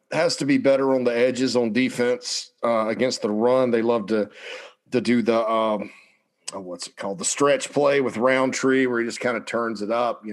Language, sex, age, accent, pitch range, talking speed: English, male, 40-59, American, 110-125 Hz, 220 wpm